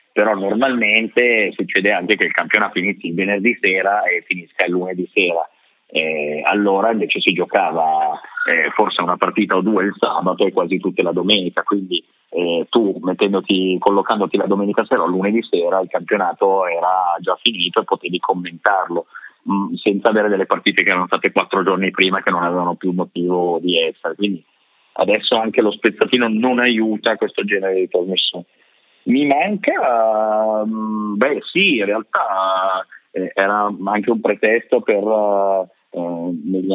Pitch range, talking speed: 90-105 Hz, 155 wpm